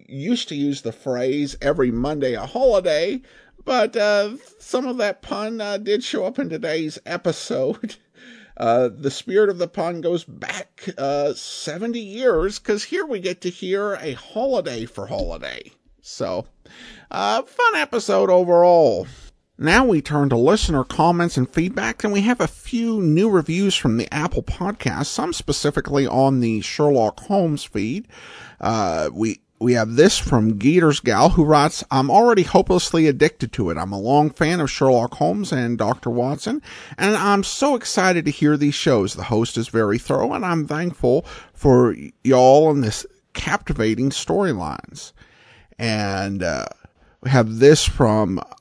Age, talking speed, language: 50-69, 160 wpm, English